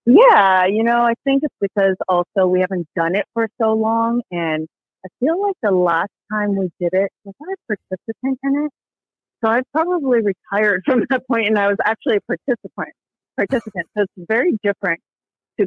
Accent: American